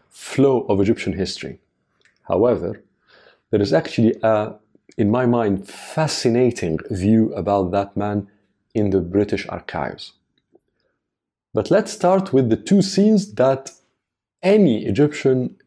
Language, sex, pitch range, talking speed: Arabic, male, 105-145 Hz, 120 wpm